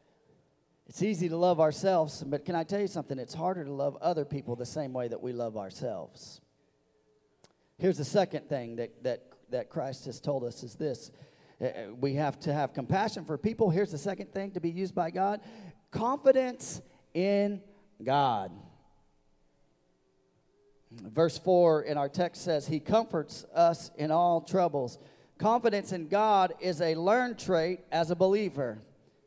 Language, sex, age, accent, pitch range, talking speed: English, male, 40-59, American, 150-200 Hz, 160 wpm